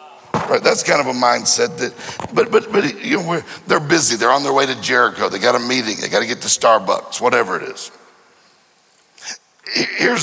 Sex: male